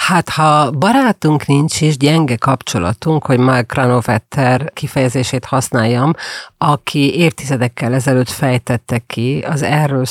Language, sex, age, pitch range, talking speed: Hungarian, female, 40-59, 130-160 Hz, 115 wpm